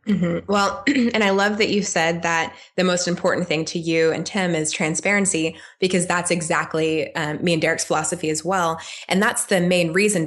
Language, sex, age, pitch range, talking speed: English, female, 20-39, 160-190 Hz, 205 wpm